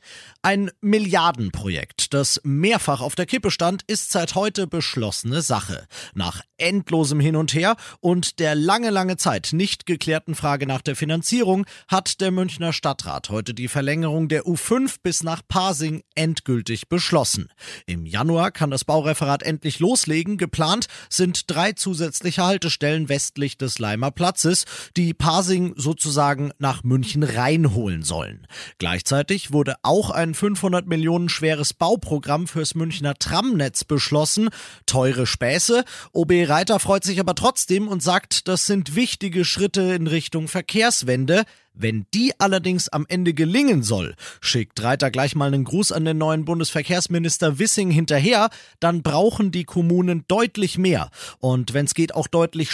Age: 40-59